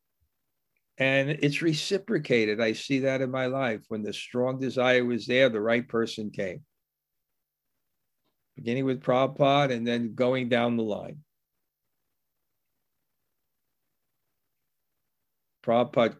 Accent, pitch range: American, 125-155 Hz